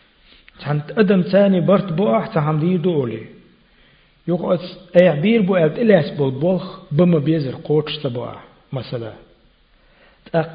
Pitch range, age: 135-175 Hz, 50-69